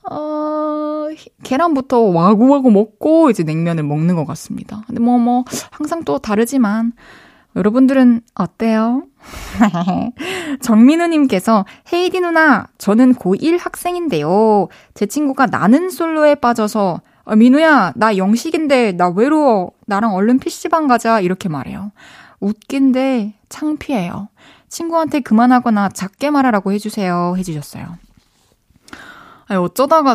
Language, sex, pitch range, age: Korean, female, 190-270 Hz, 20-39